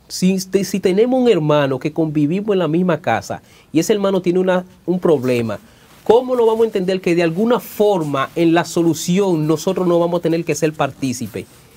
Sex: male